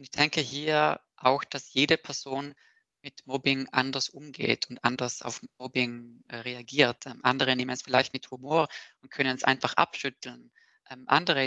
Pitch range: 125-145 Hz